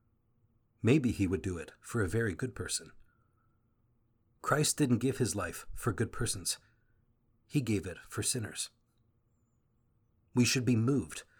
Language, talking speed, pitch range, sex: English, 140 wpm, 110-120 Hz, male